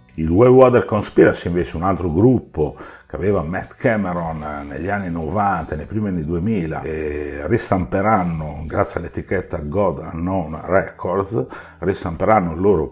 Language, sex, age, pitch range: Italian, male, 50-69, 75-95 Hz